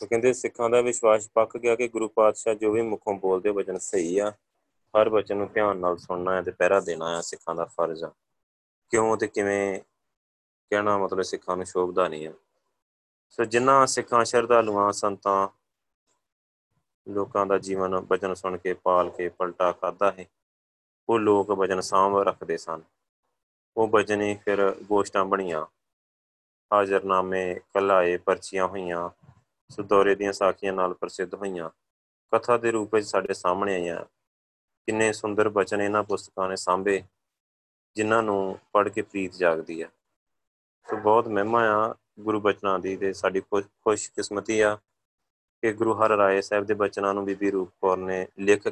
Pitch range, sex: 90-105 Hz, male